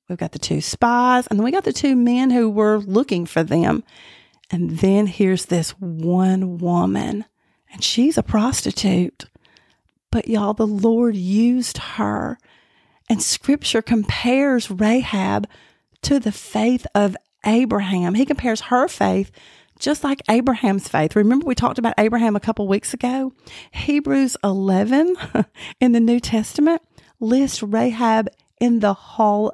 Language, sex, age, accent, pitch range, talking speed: English, female, 40-59, American, 205-245 Hz, 140 wpm